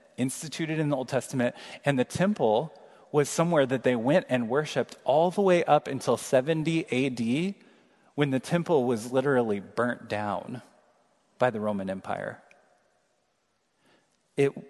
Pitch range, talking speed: 120-165 Hz, 140 wpm